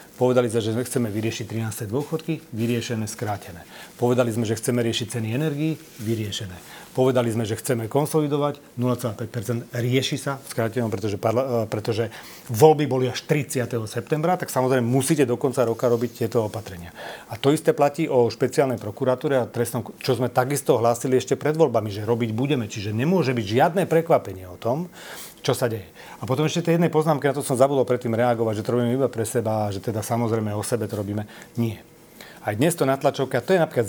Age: 40-59